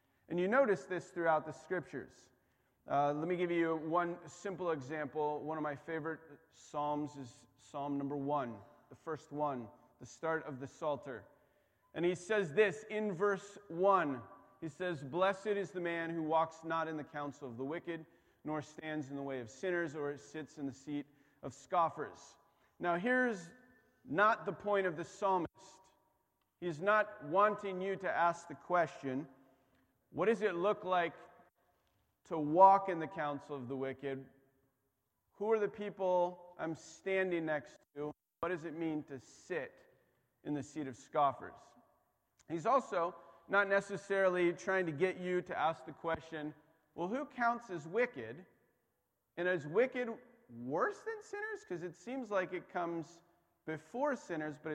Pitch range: 145-185 Hz